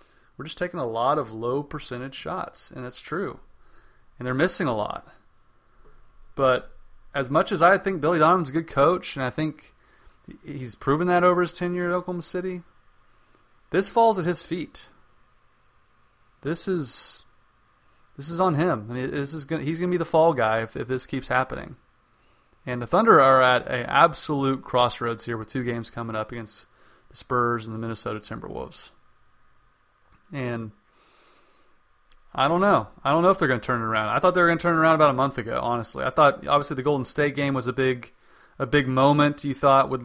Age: 30-49